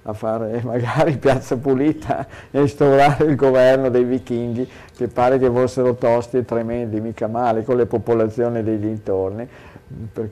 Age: 50-69